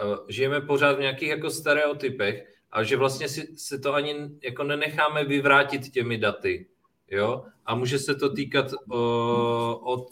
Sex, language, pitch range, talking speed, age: male, Czech, 110-135 Hz, 150 wpm, 30-49